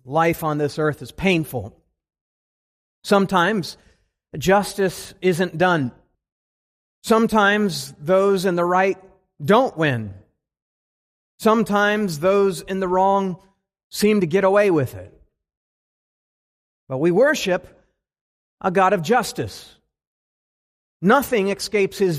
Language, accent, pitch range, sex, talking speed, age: English, American, 140-195 Hz, male, 105 wpm, 40-59